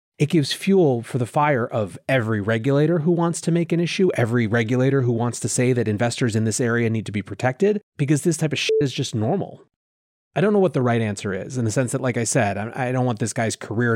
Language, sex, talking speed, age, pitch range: English, male, 255 wpm, 30-49, 110-150 Hz